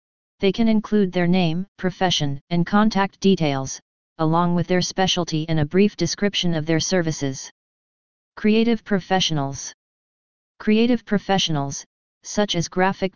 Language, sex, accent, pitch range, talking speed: English, female, American, 165-195 Hz, 125 wpm